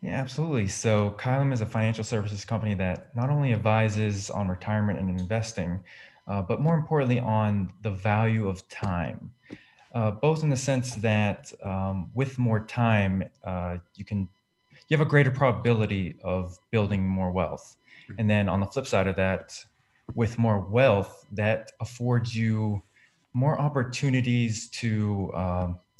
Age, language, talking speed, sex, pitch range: 20-39, English, 150 wpm, male, 100-120 Hz